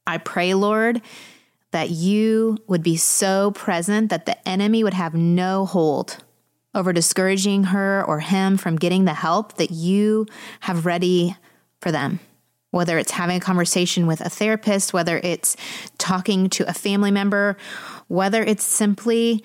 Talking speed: 150 wpm